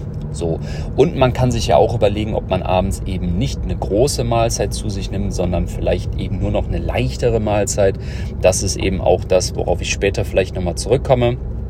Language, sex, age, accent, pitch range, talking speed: German, male, 40-59, German, 95-115 Hz, 195 wpm